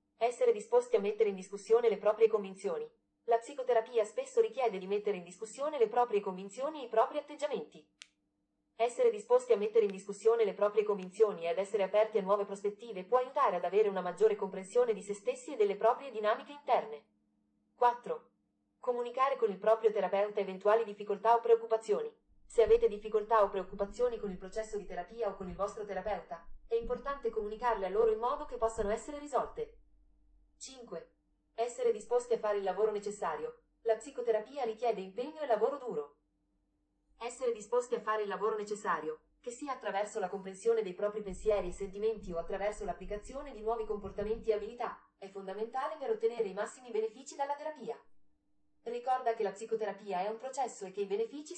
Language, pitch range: Italian, 200-255 Hz